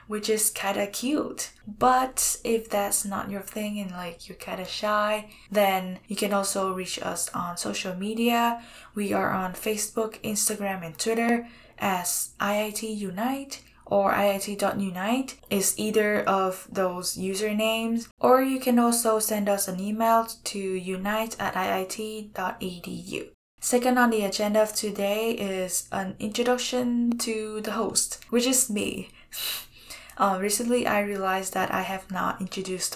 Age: 10-29